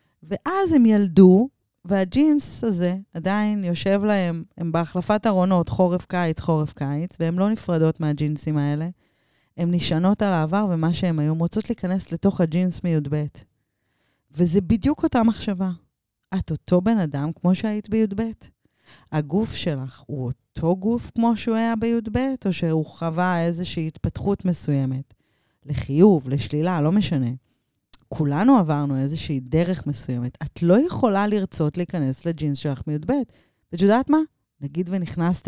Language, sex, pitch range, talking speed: Hebrew, female, 150-205 Hz, 135 wpm